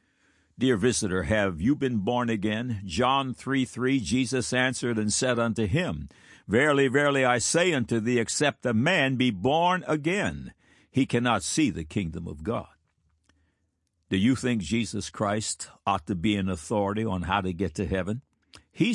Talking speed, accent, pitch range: 160 wpm, American, 100-135 Hz